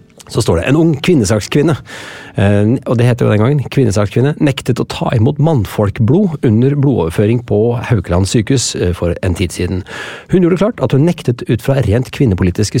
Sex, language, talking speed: male, English, 170 wpm